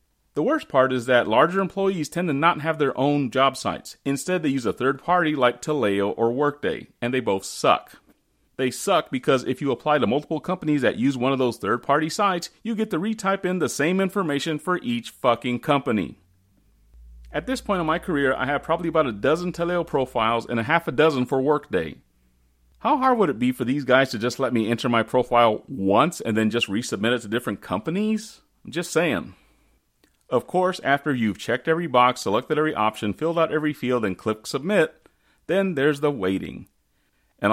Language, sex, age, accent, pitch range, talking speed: English, male, 30-49, American, 120-175 Hz, 205 wpm